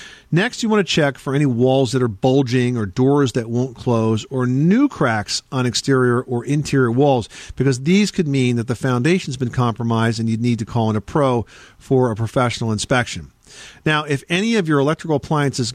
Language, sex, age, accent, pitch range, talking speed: English, male, 50-69, American, 115-150 Hz, 200 wpm